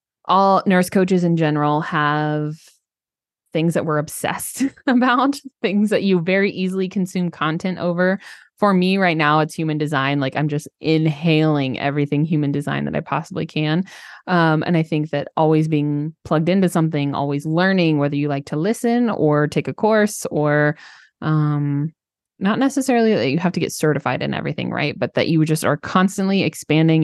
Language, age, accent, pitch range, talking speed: English, 20-39, American, 150-180 Hz, 175 wpm